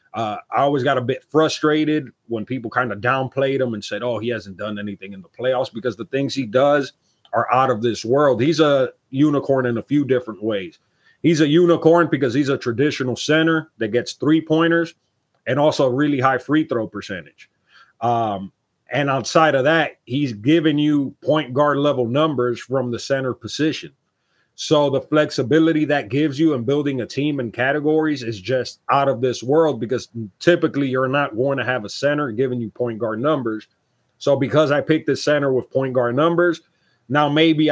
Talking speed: 190 wpm